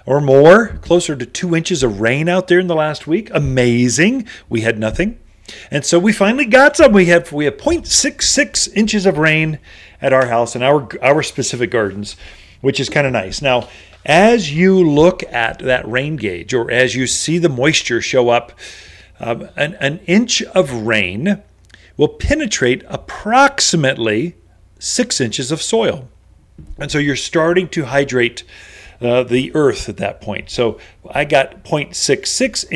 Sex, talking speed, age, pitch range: male, 165 wpm, 40-59, 120-175 Hz